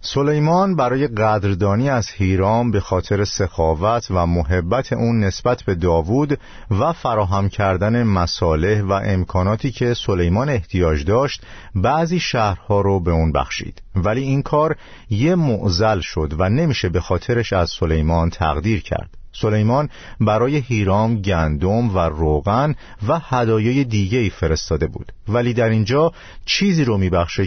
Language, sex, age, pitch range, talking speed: Persian, male, 50-69, 90-120 Hz, 135 wpm